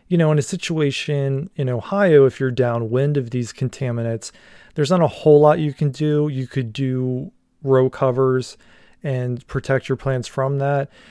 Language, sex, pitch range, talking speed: English, male, 120-140 Hz, 175 wpm